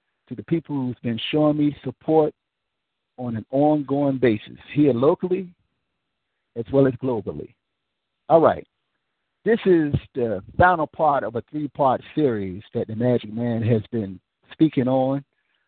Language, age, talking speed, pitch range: English, 50-69, 140 wpm, 120-155 Hz